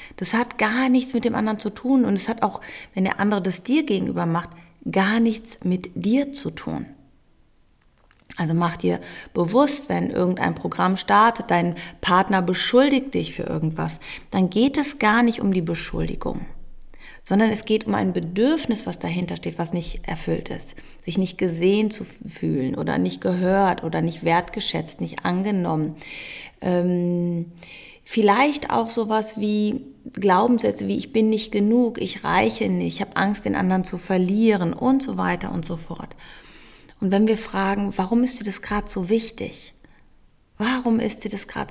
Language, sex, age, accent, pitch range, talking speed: German, female, 30-49, German, 180-230 Hz, 170 wpm